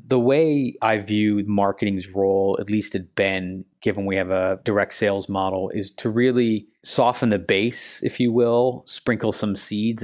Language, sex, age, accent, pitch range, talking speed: English, male, 30-49, American, 95-115 Hz, 175 wpm